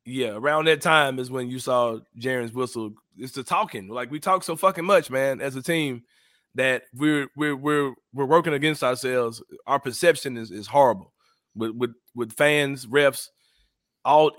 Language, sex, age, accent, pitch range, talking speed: English, male, 30-49, American, 130-160 Hz, 175 wpm